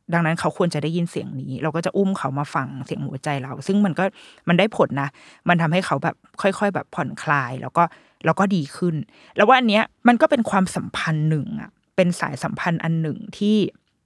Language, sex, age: Thai, female, 20-39